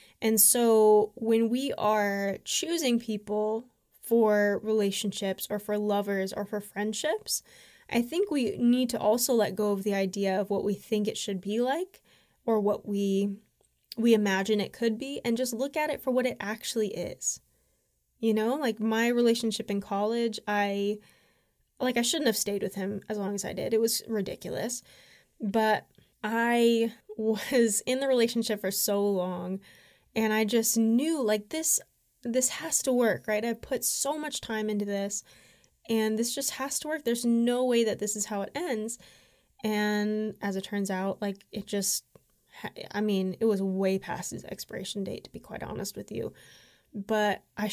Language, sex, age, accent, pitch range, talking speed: English, female, 10-29, American, 200-230 Hz, 180 wpm